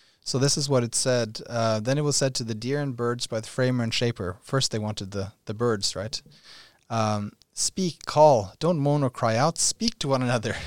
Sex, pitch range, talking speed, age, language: male, 110-140 Hz, 225 wpm, 30-49, English